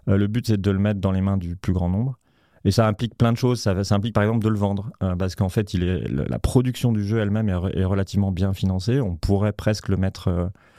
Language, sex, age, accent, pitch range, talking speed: French, male, 30-49, French, 95-110 Hz, 280 wpm